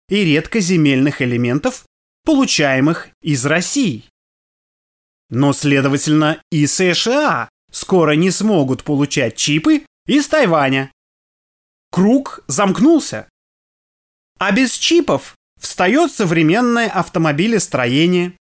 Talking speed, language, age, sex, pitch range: 80 wpm, Russian, 20-39, male, 140-215 Hz